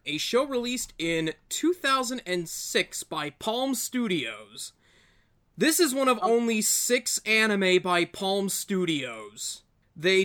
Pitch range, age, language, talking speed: 165-225 Hz, 20-39, English, 110 wpm